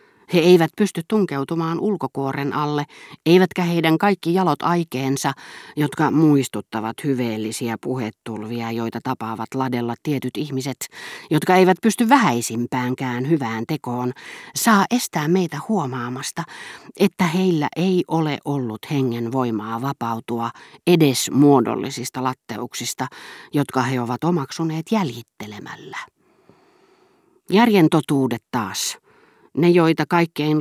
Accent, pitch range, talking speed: native, 125-175 Hz, 100 wpm